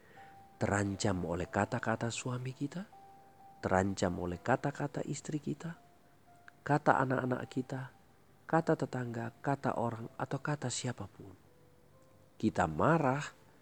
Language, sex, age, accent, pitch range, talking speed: Indonesian, male, 50-69, native, 95-140 Hz, 95 wpm